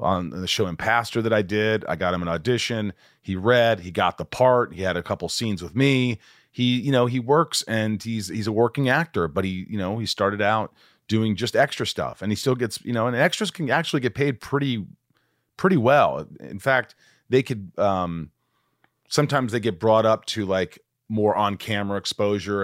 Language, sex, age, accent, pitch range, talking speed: English, male, 30-49, American, 95-115 Hz, 210 wpm